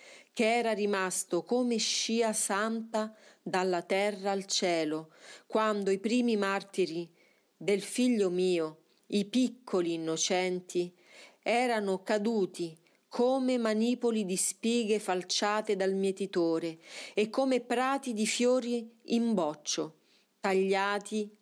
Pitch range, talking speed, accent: 180-235 Hz, 105 wpm, native